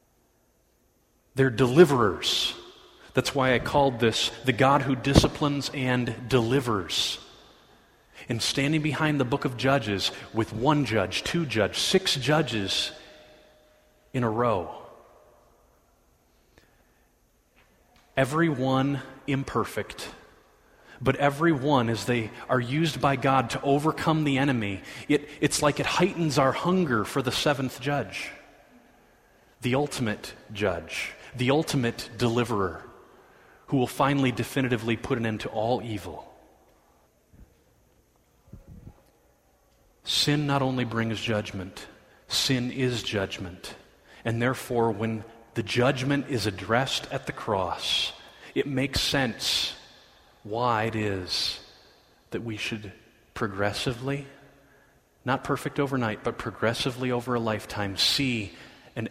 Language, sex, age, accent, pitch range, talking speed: English, male, 30-49, American, 110-140 Hz, 110 wpm